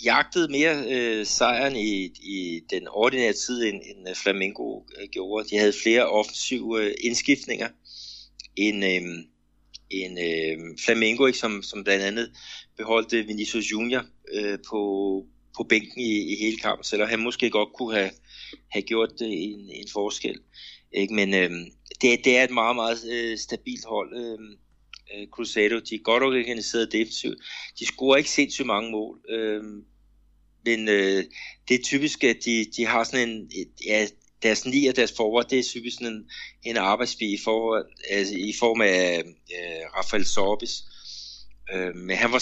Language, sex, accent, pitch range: Danish, male, native, 95-115 Hz